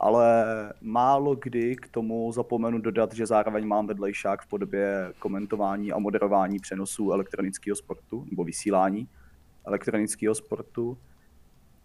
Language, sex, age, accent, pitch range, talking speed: Czech, male, 30-49, native, 105-125 Hz, 115 wpm